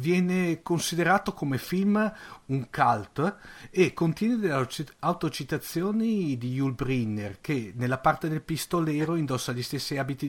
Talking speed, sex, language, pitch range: 130 wpm, male, Italian, 125-165 Hz